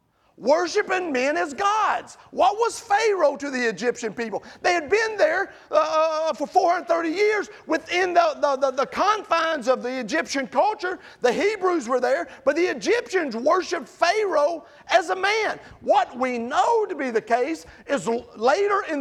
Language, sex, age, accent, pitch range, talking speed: English, male, 40-59, American, 235-355 Hz, 160 wpm